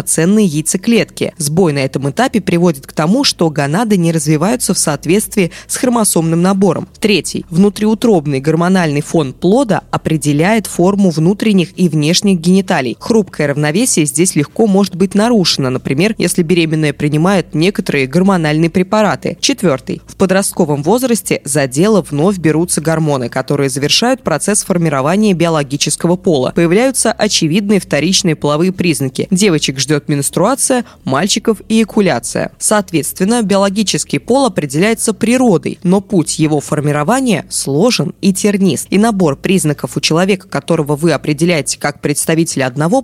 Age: 20-39